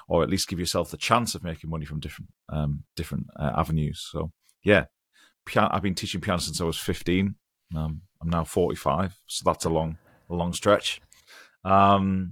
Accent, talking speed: British, 195 wpm